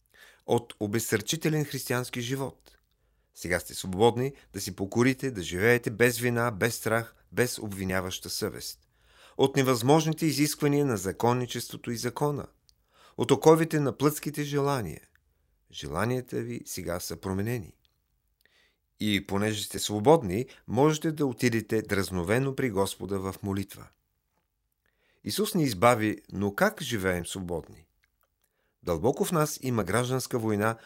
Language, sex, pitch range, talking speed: Bulgarian, male, 100-140 Hz, 120 wpm